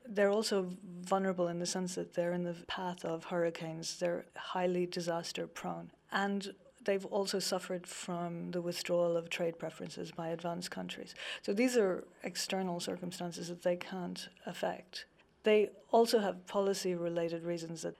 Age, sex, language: 40-59, female, English